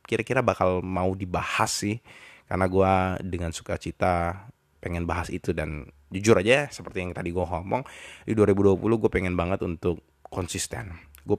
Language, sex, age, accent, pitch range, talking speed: Indonesian, male, 20-39, native, 85-110 Hz, 150 wpm